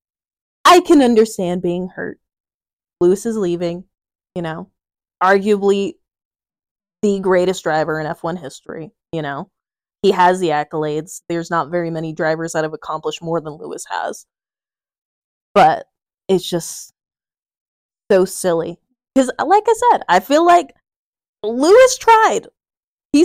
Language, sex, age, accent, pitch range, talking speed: English, female, 20-39, American, 175-250 Hz, 130 wpm